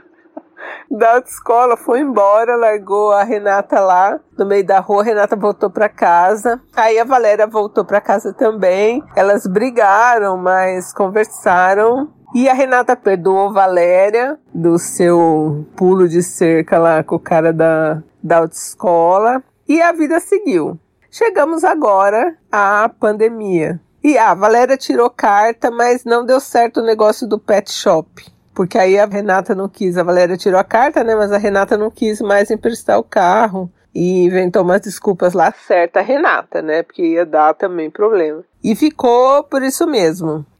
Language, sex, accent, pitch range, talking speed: Portuguese, female, Brazilian, 185-230 Hz, 160 wpm